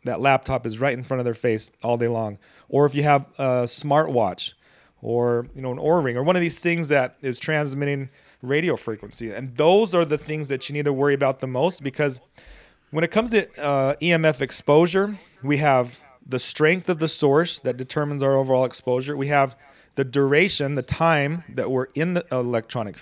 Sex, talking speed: male, 205 wpm